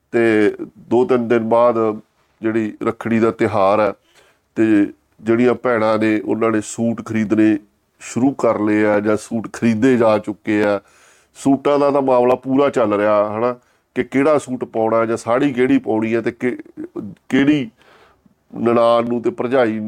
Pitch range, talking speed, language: 105-125 Hz, 150 wpm, Punjabi